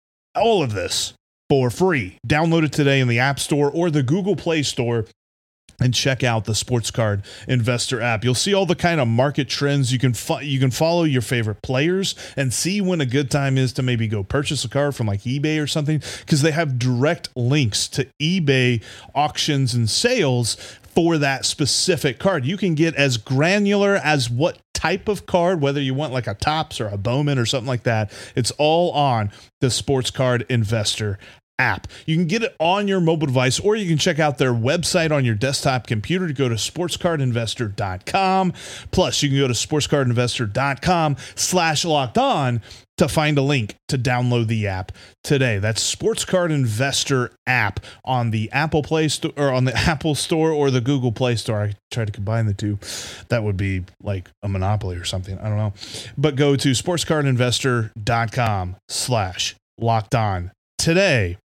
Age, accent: 30-49, American